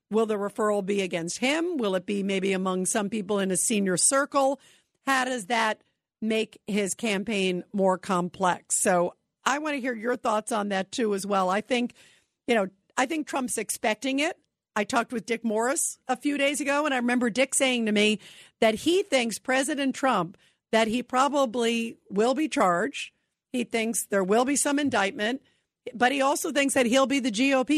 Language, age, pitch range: English, 50-69, 215-270 Hz